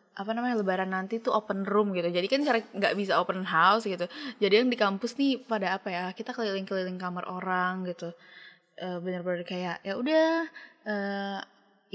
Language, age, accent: Indonesian, 20-39, native